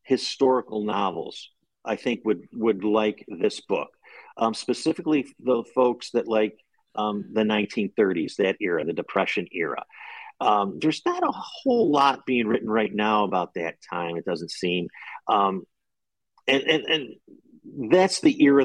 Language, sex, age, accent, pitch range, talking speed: English, male, 50-69, American, 105-130 Hz, 150 wpm